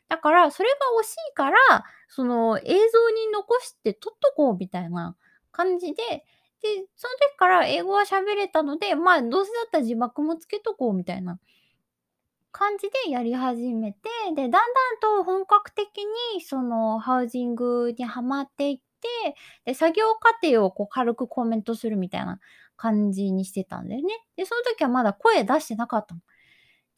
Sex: female